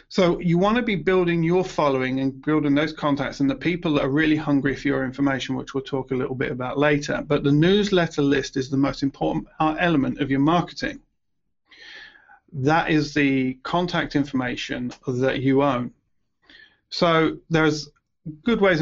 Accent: British